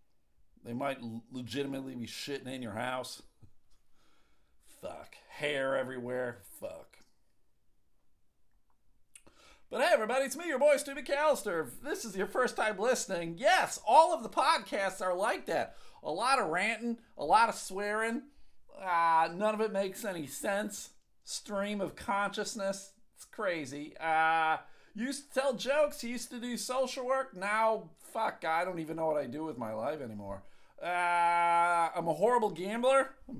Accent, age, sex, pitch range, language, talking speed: American, 50-69, male, 140-215 Hz, English, 155 wpm